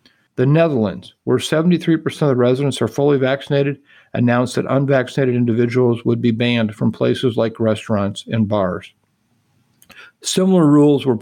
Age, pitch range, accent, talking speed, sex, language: 50-69, 120-140 Hz, American, 140 wpm, male, English